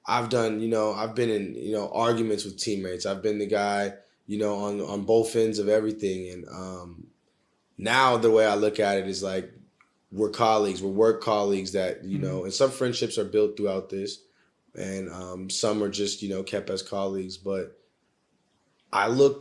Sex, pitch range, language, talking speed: male, 95-110 Hz, English, 195 wpm